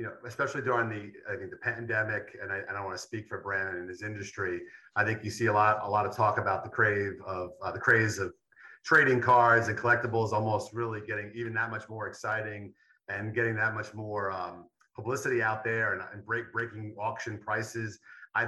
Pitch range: 110-125 Hz